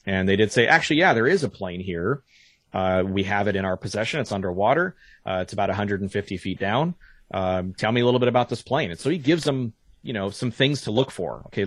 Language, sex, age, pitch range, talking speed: English, male, 30-49, 95-120 Hz, 245 wpm